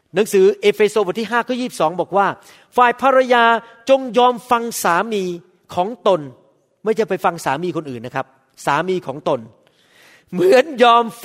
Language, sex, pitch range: Thai, male, 185-245 Hz